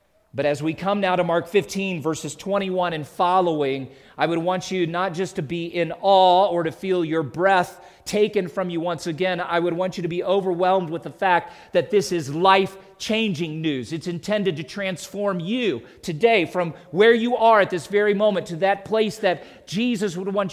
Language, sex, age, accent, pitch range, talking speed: English, male, 40-59, American, 160-200 Hz, 200 wpm